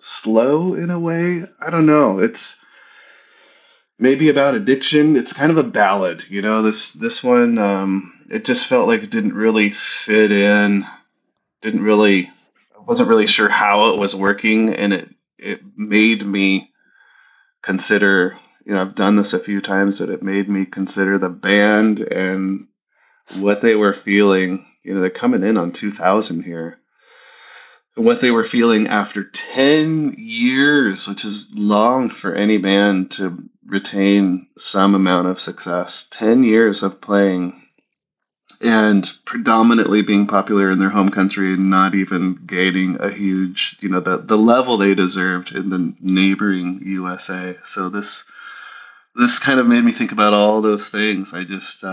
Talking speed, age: 160 wpm, 30-49